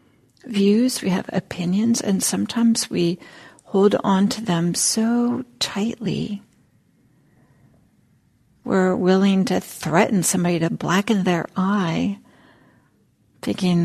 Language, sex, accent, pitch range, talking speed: English, female, American, 180-240 Hz, 100 wpm